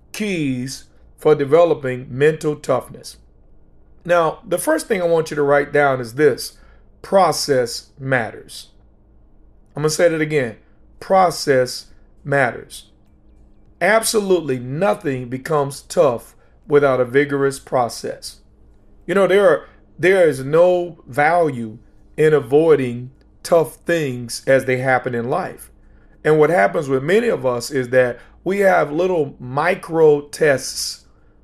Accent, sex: American, male